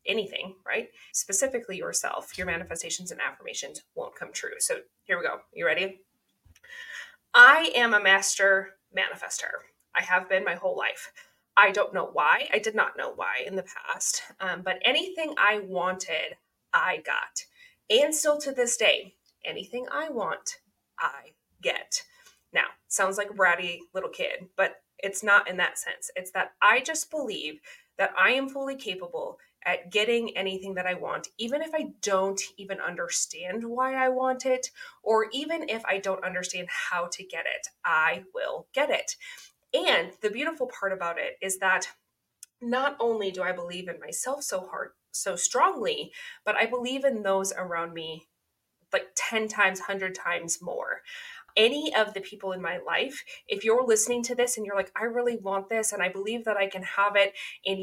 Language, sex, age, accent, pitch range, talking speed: English, female, 20-39, American, 190-320 Hz, 175 wpm